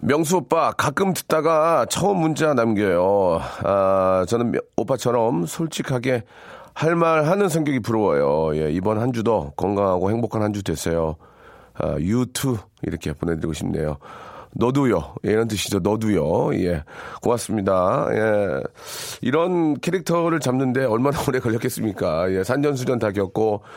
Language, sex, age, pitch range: Korean, male, 40-59, 110-165 Hz